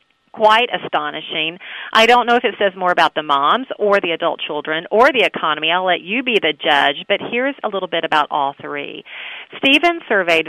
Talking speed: 200 wpm